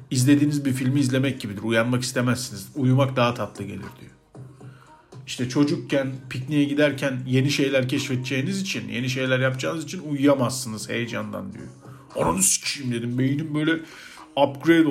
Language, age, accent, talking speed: Turkish, 50-69, native, 135 wpm